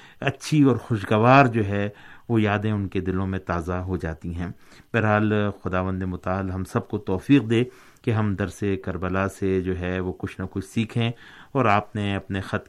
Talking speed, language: 190 wpm, Urdu